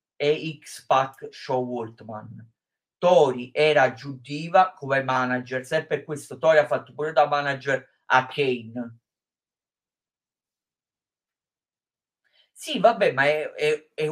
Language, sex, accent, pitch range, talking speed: Italian, male, native, 125-145 Hz, 110 wpm